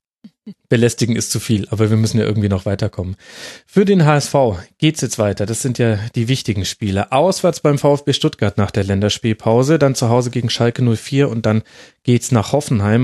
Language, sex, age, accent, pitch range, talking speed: German, male, 30-49, German, 110-145 Hz, 190 wpm